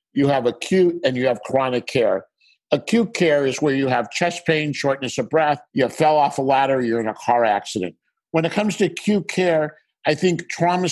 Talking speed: 210 wpm